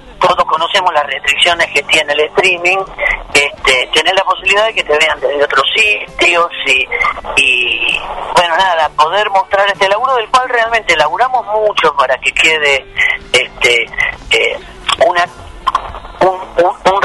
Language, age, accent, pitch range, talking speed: Spanish, 40-59, Argentinian, 150-205 Hz, 145 wpm